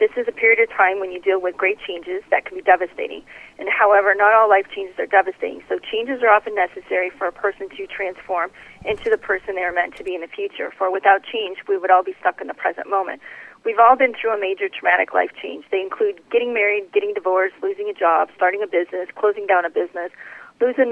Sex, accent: female, American